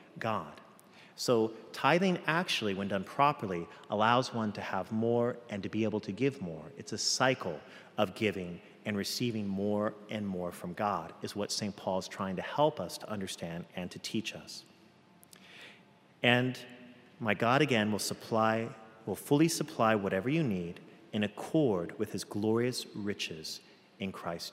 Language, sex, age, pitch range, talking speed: English, male, 40-59, 100-125 Hz, 160 wpm